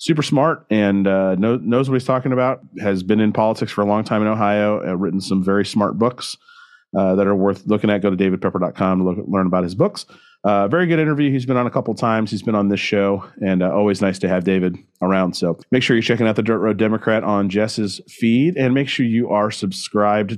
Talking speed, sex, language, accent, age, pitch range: 240 wpm, male, English, American, 40-59, 100-150 Hz